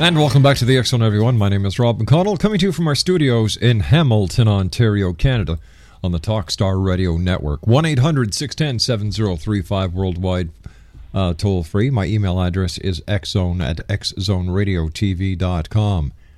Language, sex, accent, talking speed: English, male, American, 145 wpm